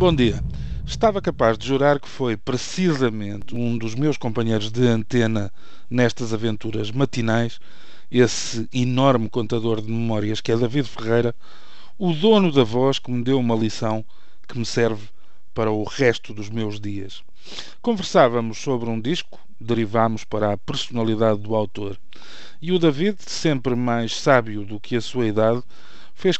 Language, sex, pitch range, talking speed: Portuguese, male, 110-130 Hz, 150 wpm